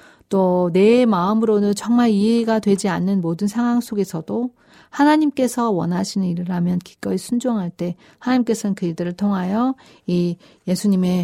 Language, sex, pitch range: Korean, female, 175-220 Hz